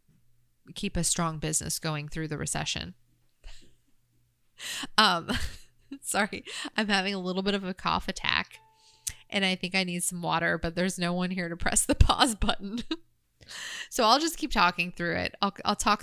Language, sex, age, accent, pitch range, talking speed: English, female, 20-39, American, 155-200 Hz, 170 wpm